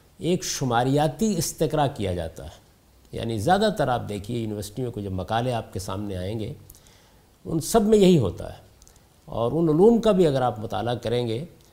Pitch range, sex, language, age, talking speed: 105-160 Hz, male, Urdu, 50-69, 185 wpm